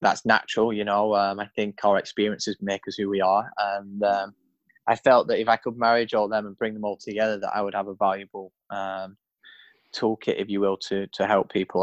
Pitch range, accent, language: 105-115 Hz, British, English